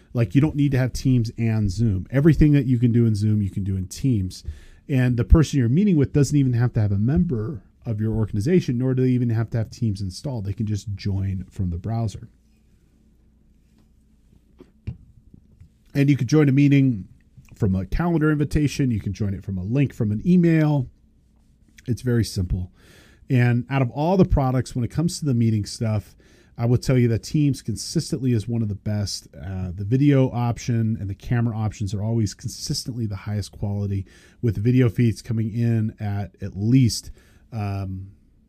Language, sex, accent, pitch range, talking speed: English, male, American, 100-130 Hz, 195 wpm